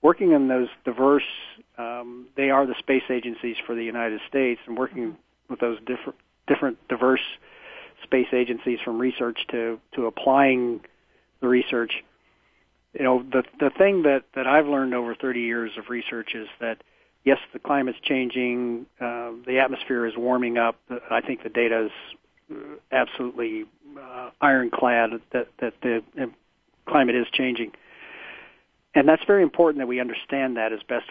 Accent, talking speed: American, 155 wpm